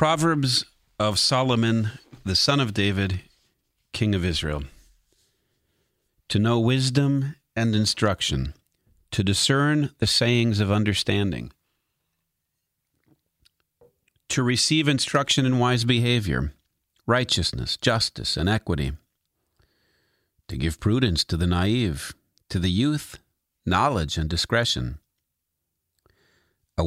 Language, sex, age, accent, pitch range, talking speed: English, male, 40-59, American, 80-125 Hz, 100 wpm